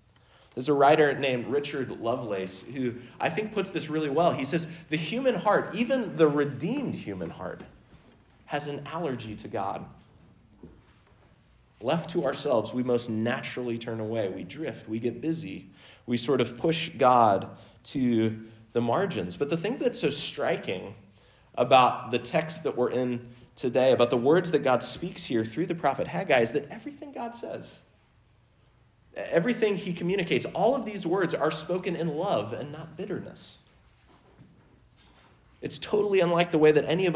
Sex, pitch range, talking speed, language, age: male, 120-175 Hz, 160 wpm, English, 30-49